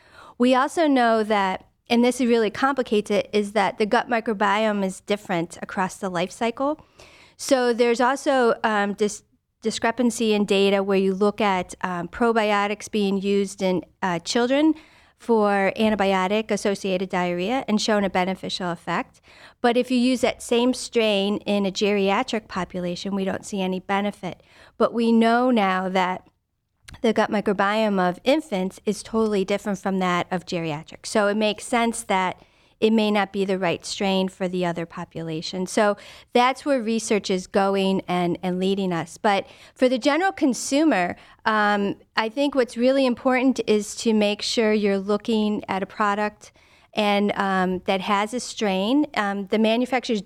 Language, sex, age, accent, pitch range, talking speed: English, female, 40-59, American, 195-235 Hz, 160 wpm